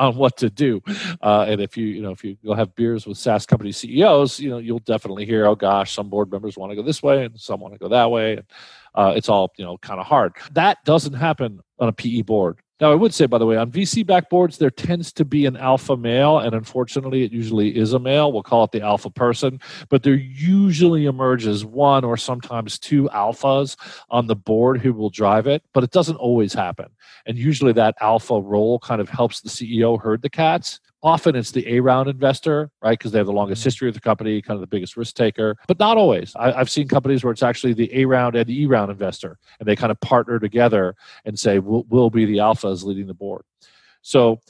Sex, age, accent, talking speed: male, 40-59, American, 235 wpm